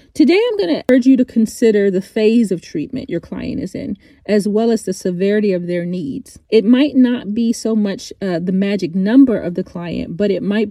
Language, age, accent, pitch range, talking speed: English, 30-49, American, 185-230 Hz, 225 wpm